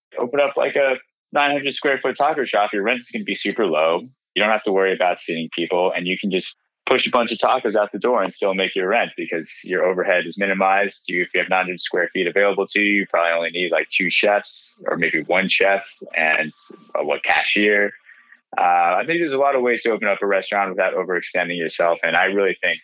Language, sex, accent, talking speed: English, male, American, 235 wpm